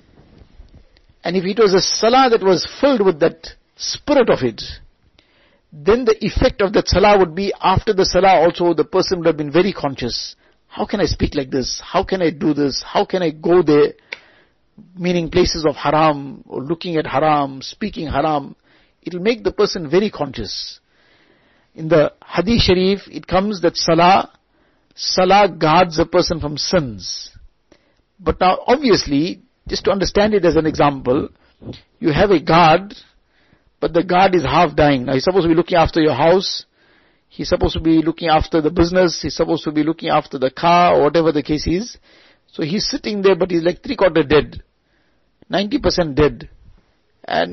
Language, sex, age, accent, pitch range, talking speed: English, male, 50-69, Indian, 150-185 Hz, 180 wpm